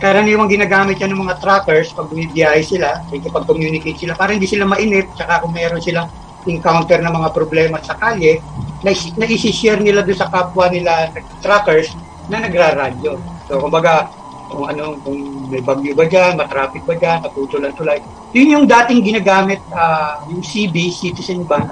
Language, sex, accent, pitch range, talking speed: Filipino, male, native, 160-205 Hz, 175 wpm